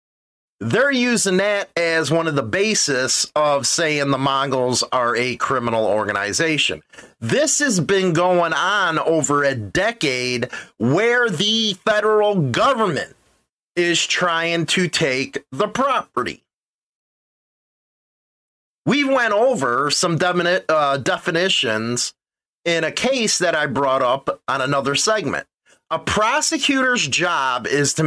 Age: 30-49